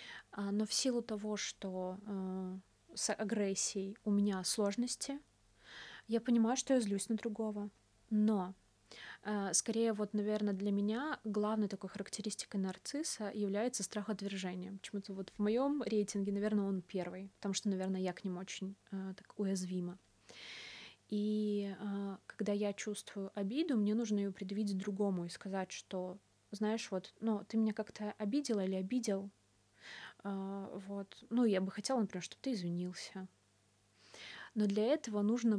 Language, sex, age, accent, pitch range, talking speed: Russian, female, 20-39, native, 195-215 Hz, 145 wpm